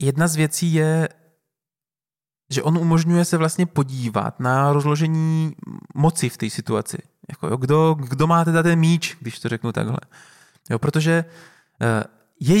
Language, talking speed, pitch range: Czech, 150 wpm, 135-175 Hz